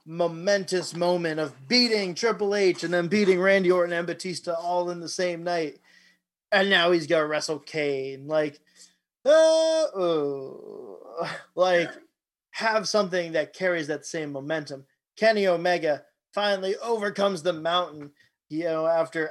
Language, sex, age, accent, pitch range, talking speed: English, male, 30-49, American, 160-200 Hz, 140 wpm